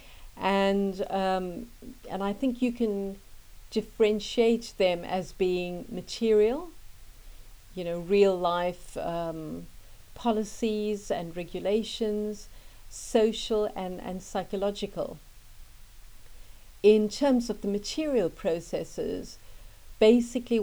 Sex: female